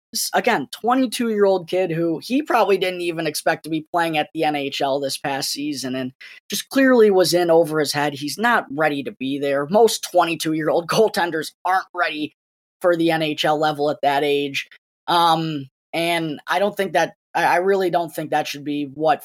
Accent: American